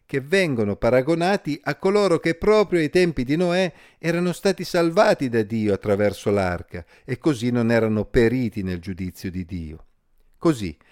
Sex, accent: male, native